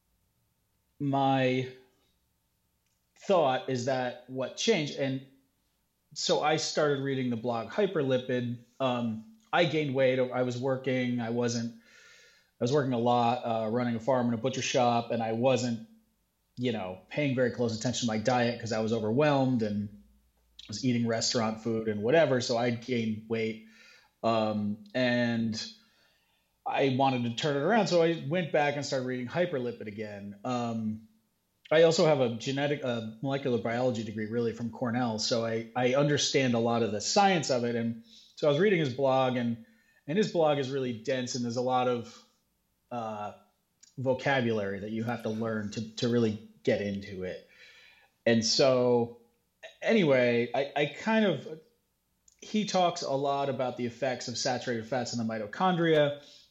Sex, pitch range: male, 115-135 Hz